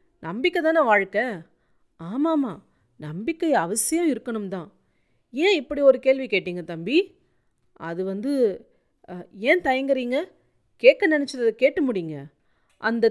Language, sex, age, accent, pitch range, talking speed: Tamil, female, 30-49, native, 195-270 Hz, 100 wpm